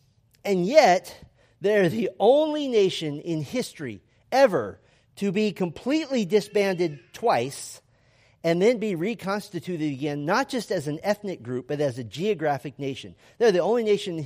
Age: 40-59